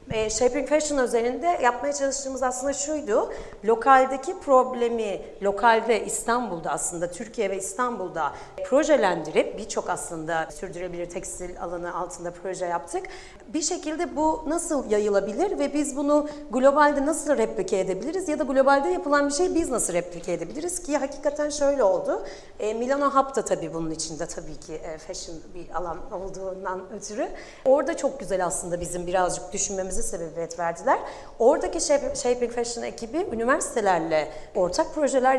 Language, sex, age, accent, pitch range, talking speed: Turkish, female, 40-59, native, 185-280 Hz, 130 wpm